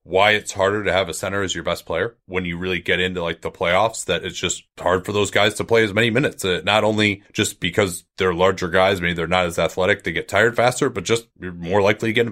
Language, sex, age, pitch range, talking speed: English, male, 30-49, 95-125 Hz, 275 wpm